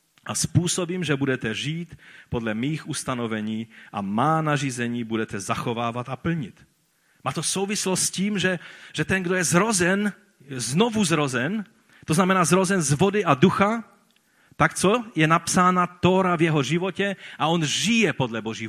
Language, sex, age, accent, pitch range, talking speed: Czech, male, 40-59, native, 130-180 Hz, 155 wpm